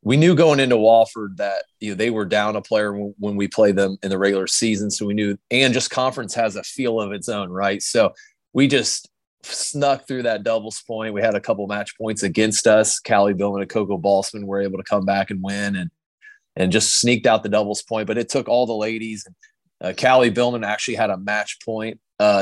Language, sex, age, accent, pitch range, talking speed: English, male, 30-49, American, 100-115 Hz, 230 wpm